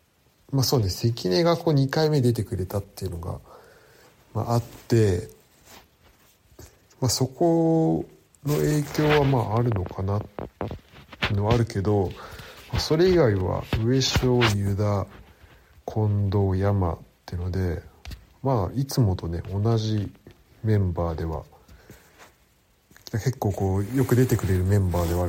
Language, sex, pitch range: Japanese, male, 90-125 Hz